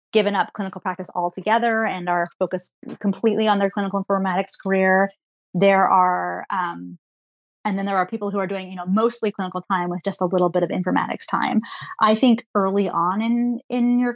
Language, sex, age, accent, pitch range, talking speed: English, female, 30-49, American, 180-205 Hz, 190 wpm